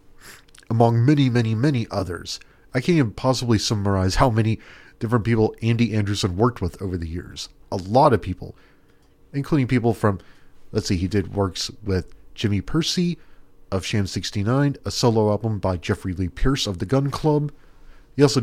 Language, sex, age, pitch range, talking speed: English, male, 40-59, 95-135 Hz, 170 wpm